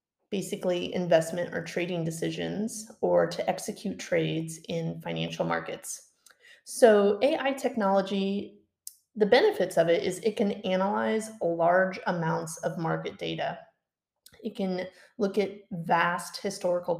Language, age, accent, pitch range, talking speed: English, 30-49, American, 175-210 Hz, 120 wpm